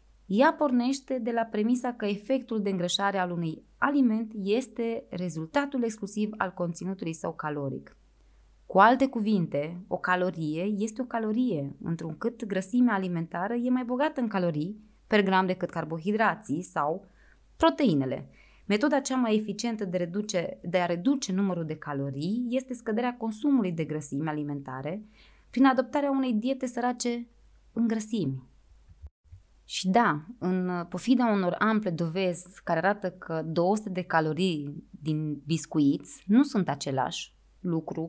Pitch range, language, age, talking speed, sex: 165-235 Hz, Romanian, 20-39, 135 wpm, female